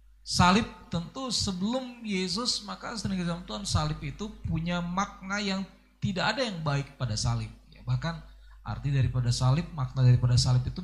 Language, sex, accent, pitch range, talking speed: Indonesian, male, native, 115-165 Hz, 150 wpm